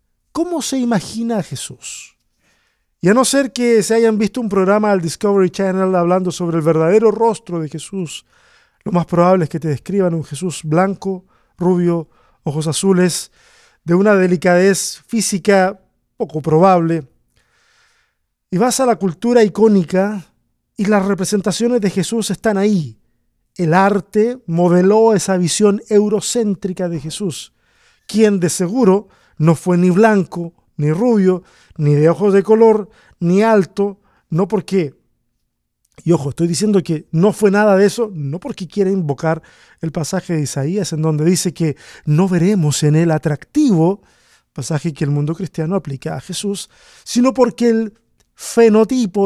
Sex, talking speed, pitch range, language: male, 150 wpm, 170-215 Hz, Spanish